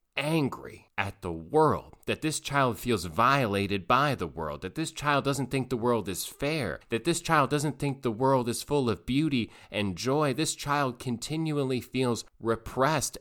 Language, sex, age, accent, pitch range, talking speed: English, male, 30-49, American, 85-120 Hz, 175 wpm